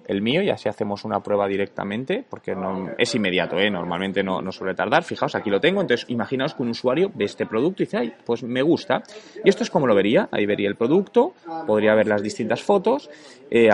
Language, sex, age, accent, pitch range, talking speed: Spanish, male, 20-39, Spanish, 110-155 Hz, 225 wpm